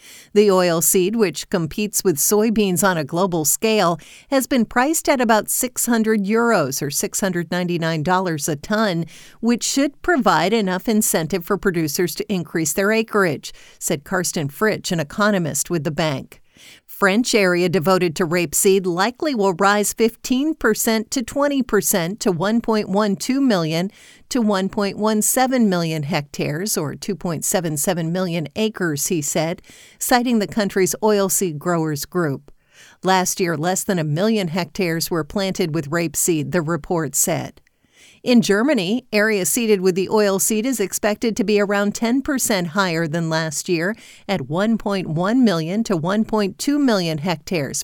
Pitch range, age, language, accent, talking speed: 175-220 Hz, 50-69, English, American, 140 wpm